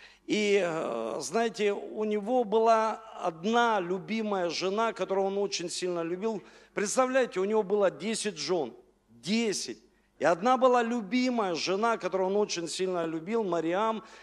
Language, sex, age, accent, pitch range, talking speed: Russian, male, 50-69, native, 190-225 Hz, 130 wpm